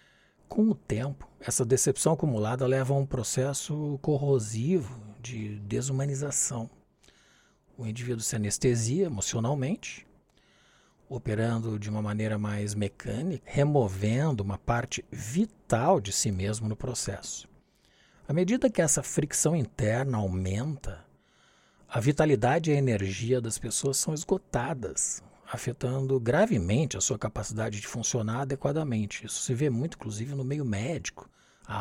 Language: Portuguese